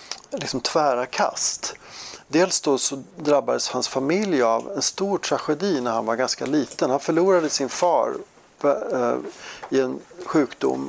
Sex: male